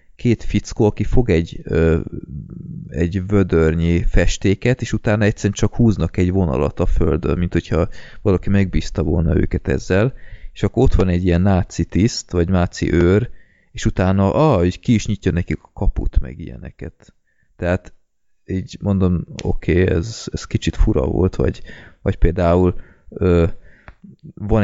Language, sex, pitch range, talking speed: Hungarian, male, 85-100 Hz, 150 wpm